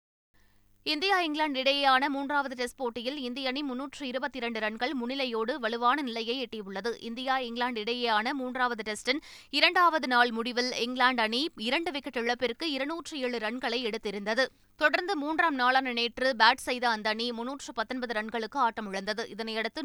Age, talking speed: 20-39, 135 wpm